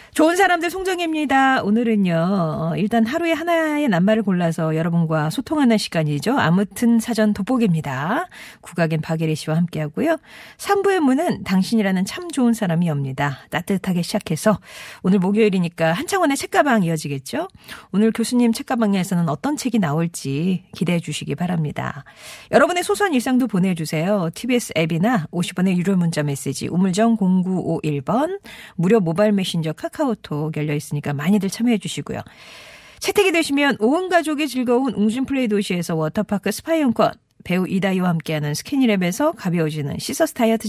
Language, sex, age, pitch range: Korean, female, 40-59, 170-260 Hz